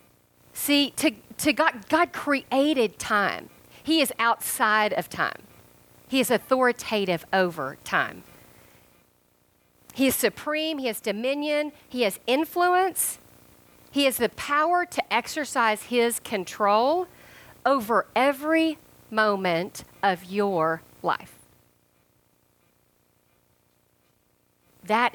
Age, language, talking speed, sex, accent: 40-59, English, 100 wpm, female, American